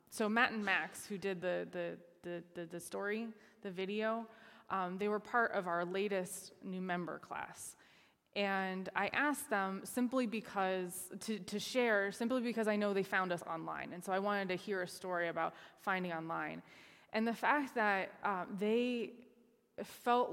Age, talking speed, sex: 20-39, 175 wpm, female